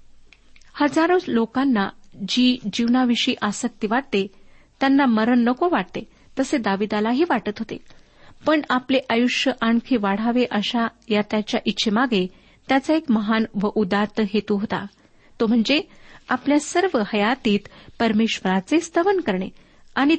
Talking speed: 115 wpm